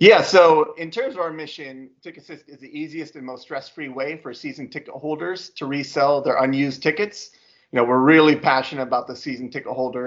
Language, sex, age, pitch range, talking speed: English, male, 30-49, 120-145 Hz, 210 wpm